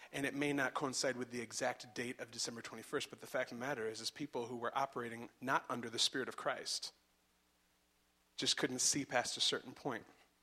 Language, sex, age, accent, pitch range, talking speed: English, male, 30-49, American, 115-145 Hz, 215 wpm